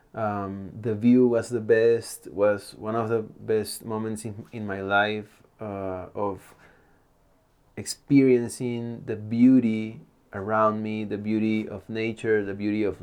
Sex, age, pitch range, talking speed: male, 30-49, 100-115 Hz, 140 wpm